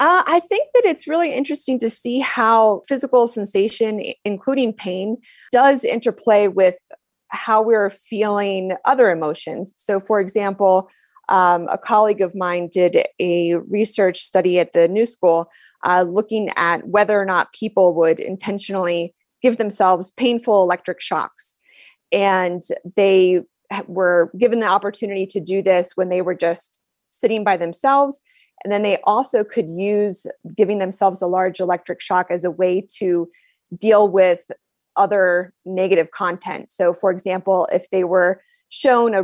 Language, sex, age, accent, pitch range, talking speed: English, female, 20-39, American, 180-220 Hz, 150 wpm